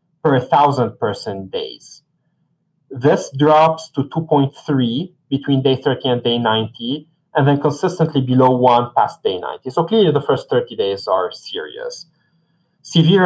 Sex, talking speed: male, 145 wpm